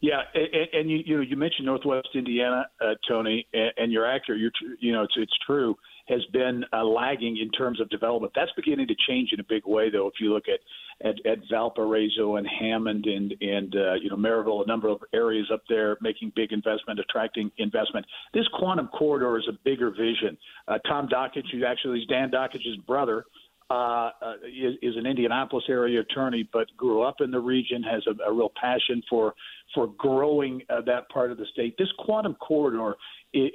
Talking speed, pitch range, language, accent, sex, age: 200 wpm, 110-135 Hz, English, American, male, 50-69